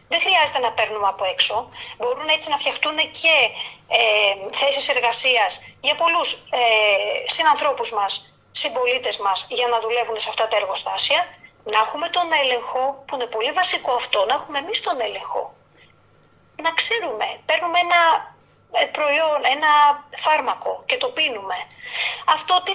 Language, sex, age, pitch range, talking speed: Greek, female, 30-49, 250-335 Hz, 135 wpm